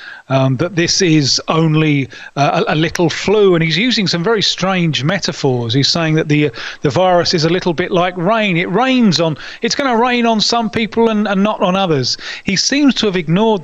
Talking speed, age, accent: 210 wpm, 30-49, British